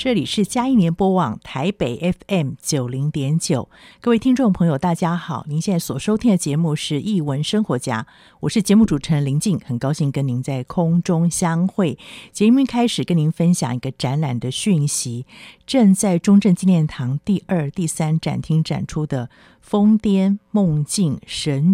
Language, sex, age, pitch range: Chinese, female, 50-69, 140-185 Hz